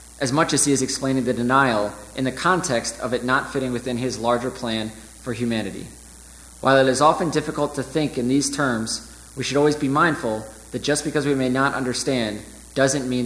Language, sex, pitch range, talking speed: English, male, 110-135 Hz, 205 wpm